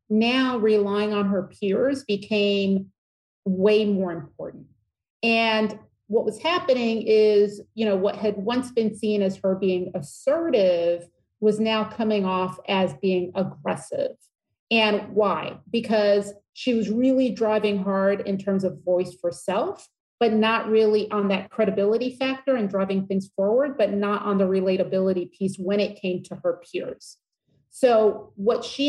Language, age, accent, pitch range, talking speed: English, 40-59, American, 190-225 Hz, 150 wpm